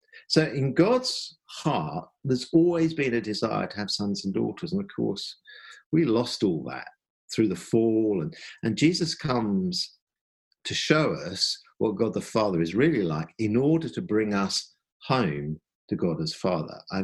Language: English